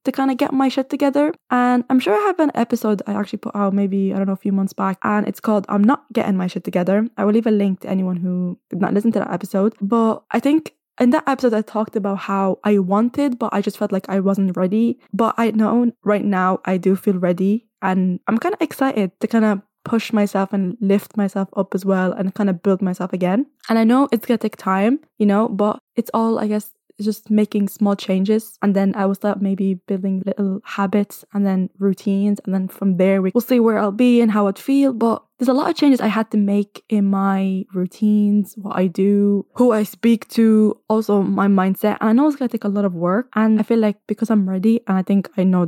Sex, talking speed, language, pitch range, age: female, 245 wpm, English, 195-230 Hz, 10-29